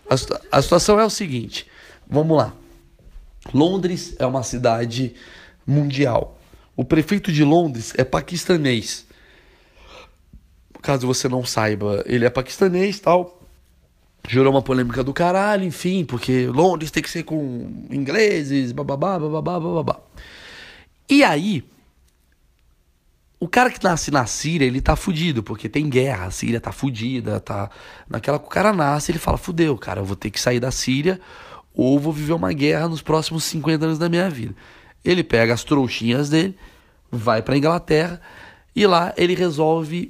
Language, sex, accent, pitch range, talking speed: Portuguese, male, Brazilian, 120-170 Hz, 155 wpm